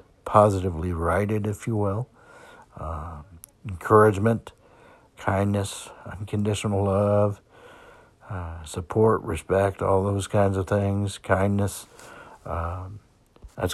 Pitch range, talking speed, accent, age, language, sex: 90-105 Hz, 80 wpm, American, 60-79, English, male